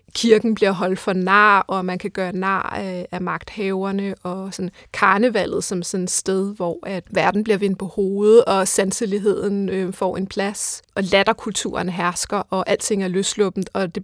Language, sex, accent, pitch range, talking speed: Danish, female, native, 185-210 Hz, 165 wpm